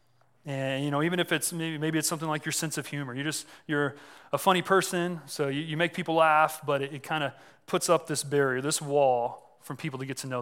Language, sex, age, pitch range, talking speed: English, male, 30-49, 130-160 Hz, 255 wpm